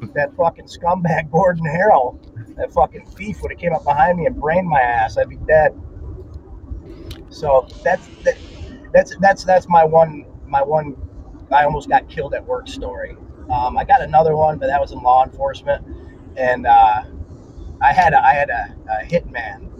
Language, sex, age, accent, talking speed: English, male, 30-49, American, 180 wpm